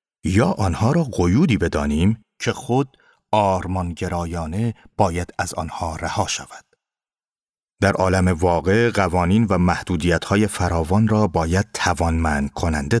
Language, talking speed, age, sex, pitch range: Persian, 105 wpm, 30-49, male, 85-120 Hz